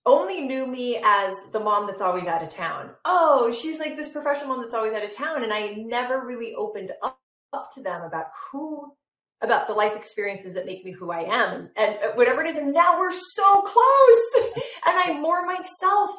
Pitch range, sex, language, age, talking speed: 200-330 Hz, female, English, 30-49, 210 wpm